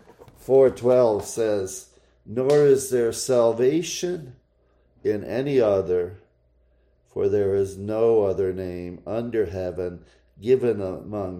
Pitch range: 70-110 Hz